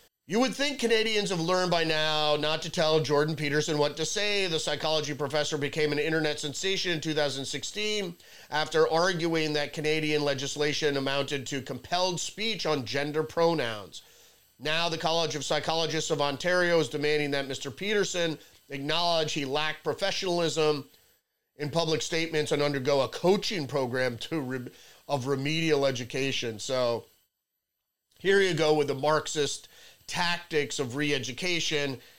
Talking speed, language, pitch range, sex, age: 140 wpm, English, 140-165 Hz, male, 30-49